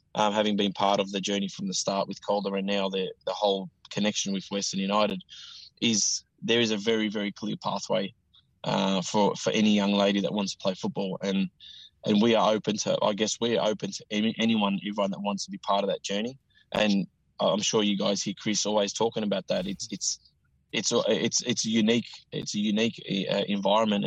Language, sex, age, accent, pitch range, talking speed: English, male, 20-39, Australian, 100-110 Hz, 215 wpm